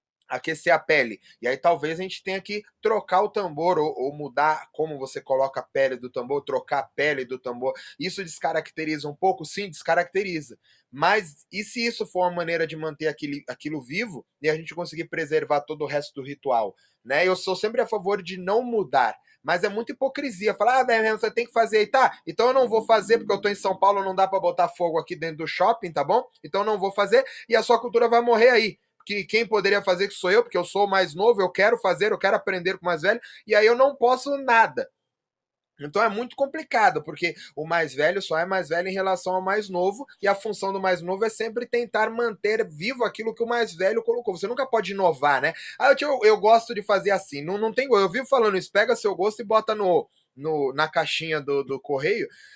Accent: Brazilian